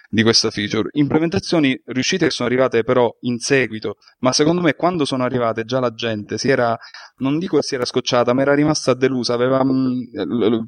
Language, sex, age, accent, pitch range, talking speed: Italian, male, 20-39, native, 120-145 Hz, 195 wpm